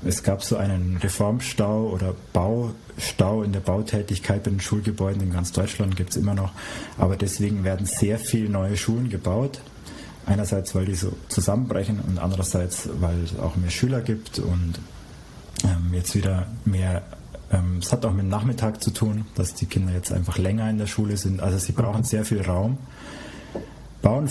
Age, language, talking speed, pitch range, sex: 30-49, English, 180 wpm, 95-110 Hz, male